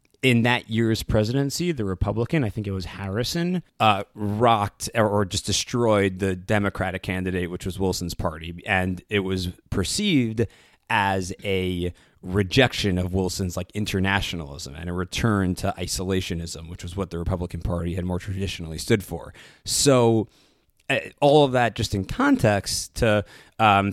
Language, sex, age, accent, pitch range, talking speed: English, male, 30-49, American, 95-115 Hz, 150 wpm